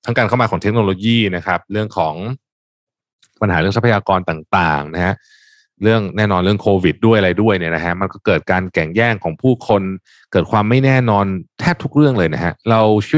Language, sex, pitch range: Thai, male, 90-125 Hz